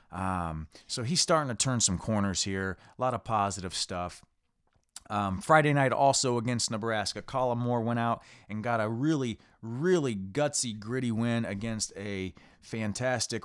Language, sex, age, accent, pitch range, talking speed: English, male, 30-49, American, 95-120 Hz, 155 wpm